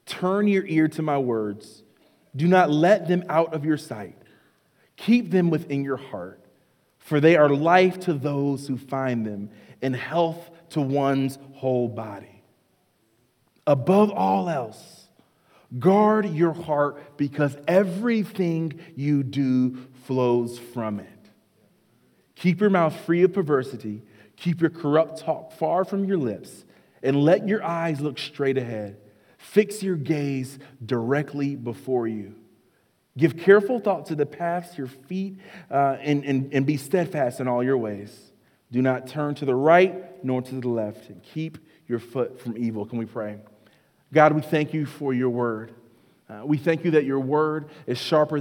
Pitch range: 115-160 Hz